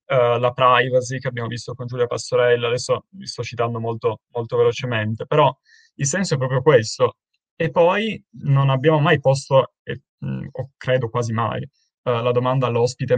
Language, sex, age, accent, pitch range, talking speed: Italian, male, 20-39, native, 120-150 Hz, 175 wpm